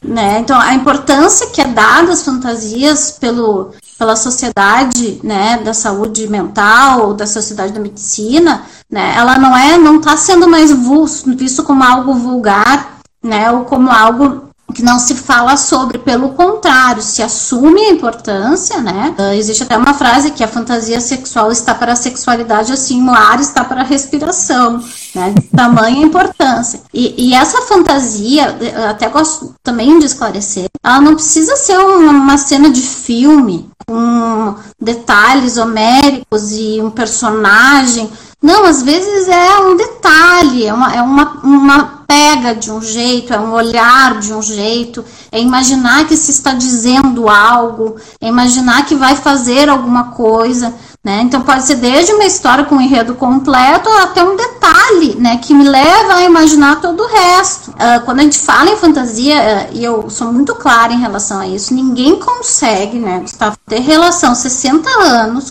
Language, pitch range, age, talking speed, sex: Portuguese, 230-295 Hz, 20-39, 160 wpm, female